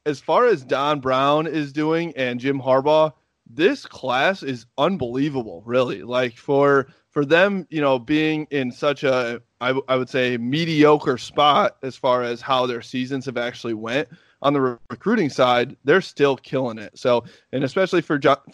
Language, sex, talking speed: English, male, 180 wpm